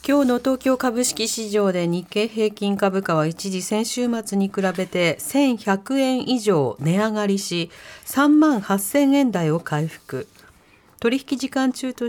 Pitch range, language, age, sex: 175-260 Hz, Japanese, 40-59, female